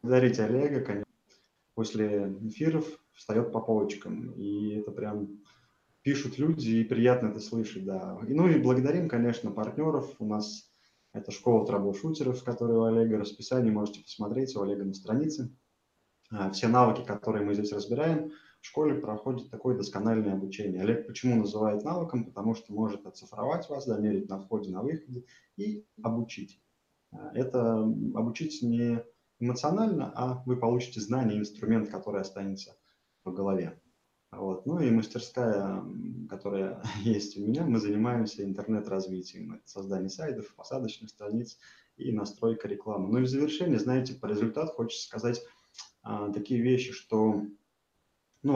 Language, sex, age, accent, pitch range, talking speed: Russian, male, 20-39, native, 105-125 Hz, 135 wpm